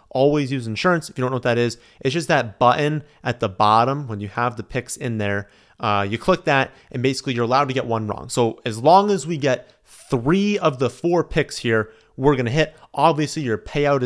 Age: 30-49